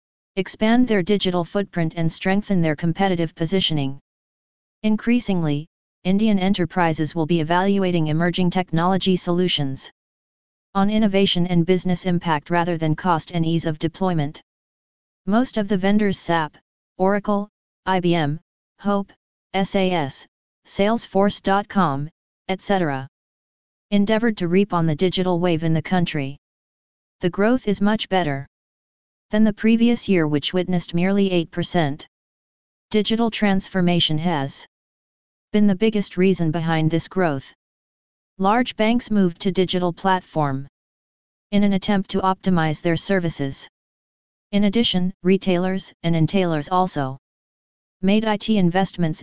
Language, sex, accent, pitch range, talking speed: English, female, American, 165-200 Hz, 120 wpm